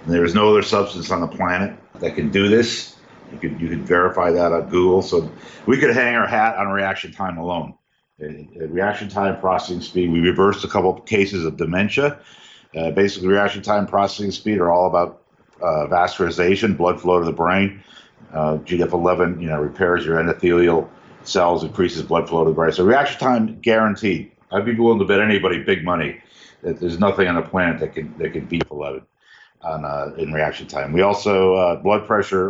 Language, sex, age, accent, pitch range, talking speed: English, male, 50-69, American, 85-100 Hz, 200 wpm